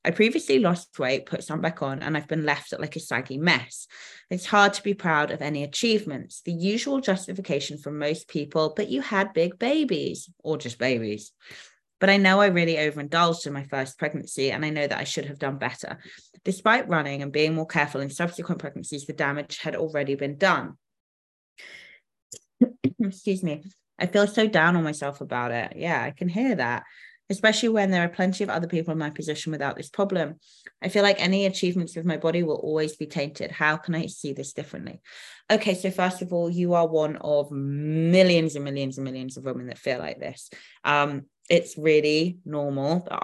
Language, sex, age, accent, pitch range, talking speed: English, female, 20-39, British, 140-180 Hz, 200 wpm